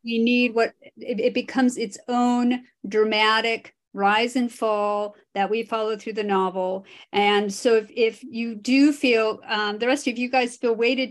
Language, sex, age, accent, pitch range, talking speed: English, female, 40-59, American, 205-250 Hz, 175 wpm